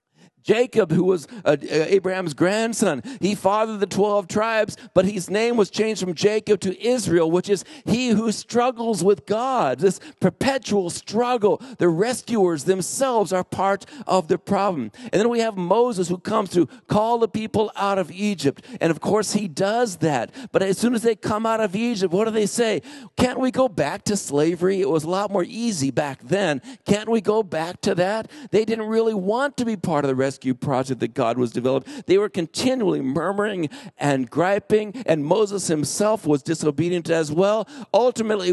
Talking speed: 185 wpm